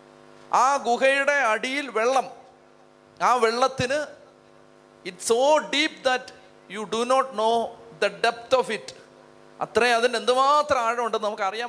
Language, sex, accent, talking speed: Malayalam, male, native, 125 wpm